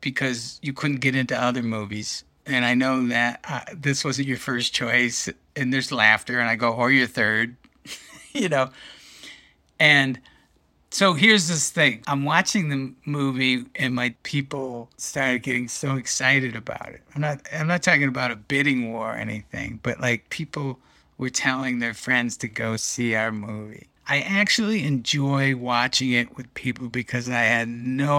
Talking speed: 170 wpm